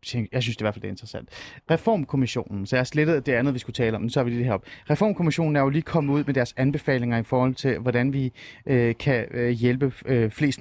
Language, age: Danish, 30-49